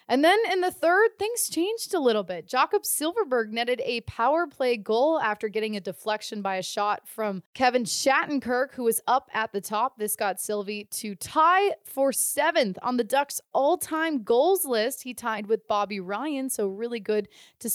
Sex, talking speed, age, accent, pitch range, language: female, 190 wpm, 20-39, American, 210-285 Hz, English